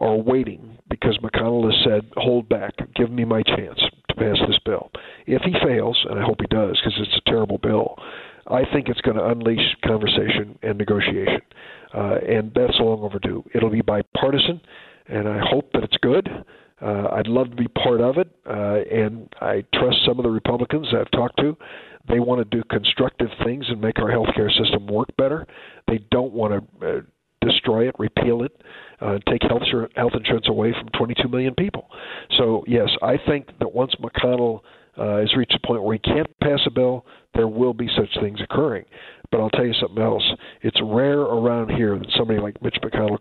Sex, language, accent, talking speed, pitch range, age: male, English, American, 200 wpm, 110-125 Hz, 50-69